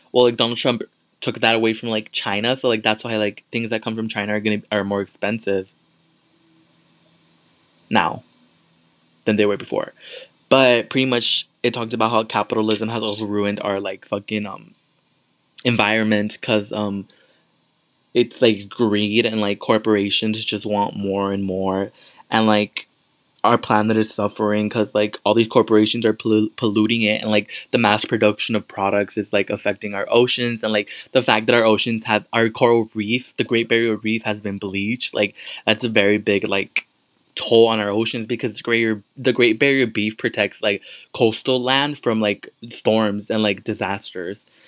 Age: 20-39